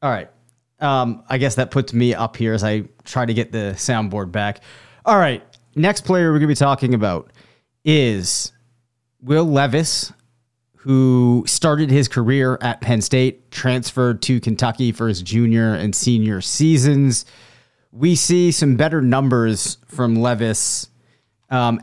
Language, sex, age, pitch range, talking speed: English, male, 30-49, 120-140 Hz, 150 wpm